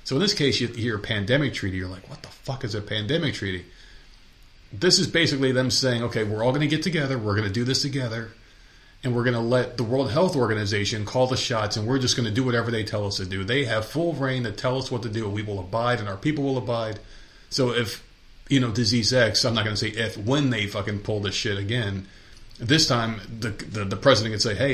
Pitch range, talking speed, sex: 105-135 Hz, 260 wpm, male